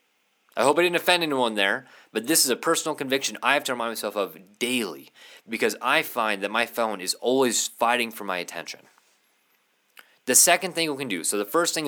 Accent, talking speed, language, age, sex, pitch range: American, 210 wpm, English, 20-39, male, 125-170 Hz